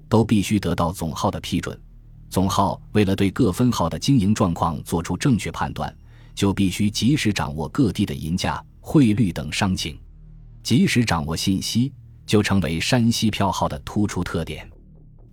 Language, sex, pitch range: Chinese, male, 90-115 Hz